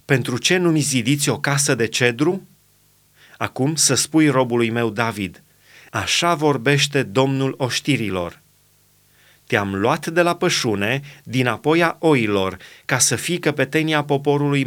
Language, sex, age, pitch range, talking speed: Romanian, male, 30-49, 135-170 Hz, 130 wpm